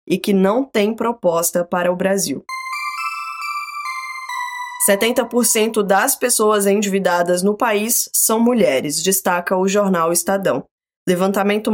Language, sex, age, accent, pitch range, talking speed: Portuguese, female, 20-39, Brazilian, 190-230 Hz, 105 wpm